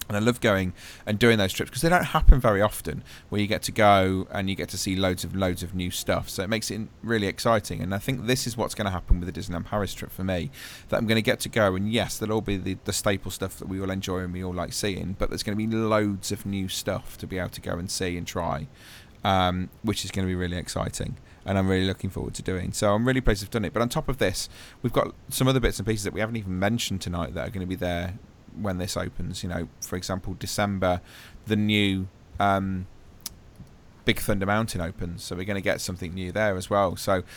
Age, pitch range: 30-49, 90-105 Hz